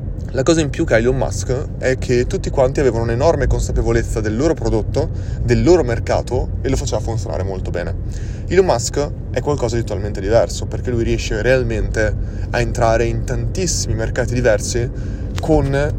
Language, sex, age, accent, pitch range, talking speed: Italian, male, 20-39, native, 100-125 Hz, 170 wpm